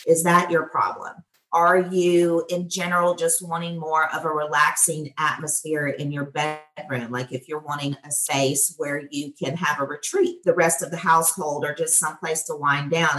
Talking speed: 185 wpm